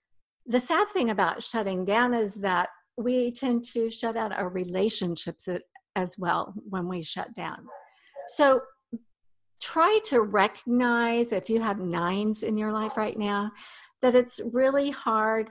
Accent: American